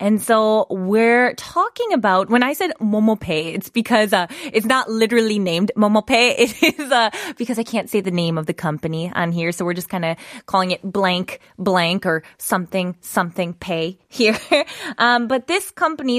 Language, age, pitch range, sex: Korean, 20-39, 185-250 Hz, female